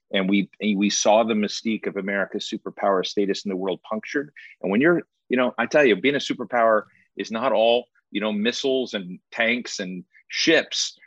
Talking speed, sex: 190 wpm, male